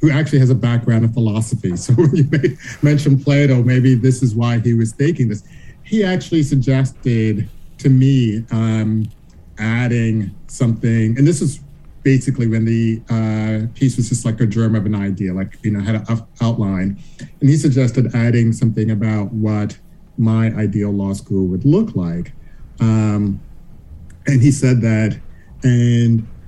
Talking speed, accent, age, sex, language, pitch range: 160 wpm, American, 50-69, male, English, 105-125 Hz